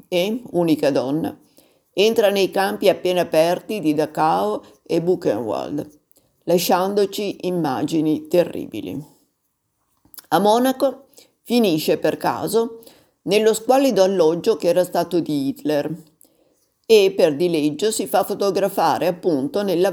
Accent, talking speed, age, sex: native, 110 wpm, 50-69, female